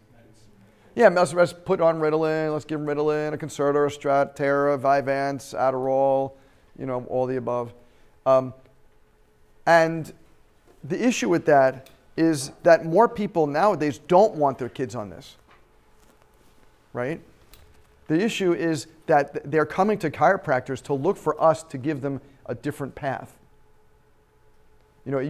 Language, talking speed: English, 140 wpm